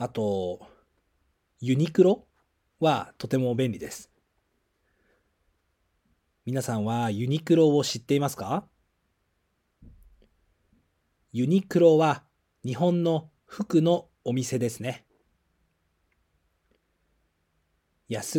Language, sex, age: Japanese, male, 40-59